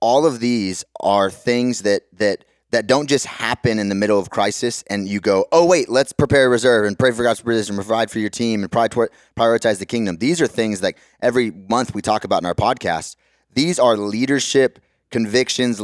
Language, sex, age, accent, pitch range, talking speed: English, male, 30-49, American, 105-125 Hz, 210 wpm